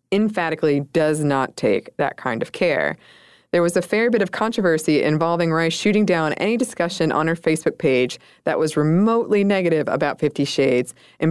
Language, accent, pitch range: English, American, 145-180 Hz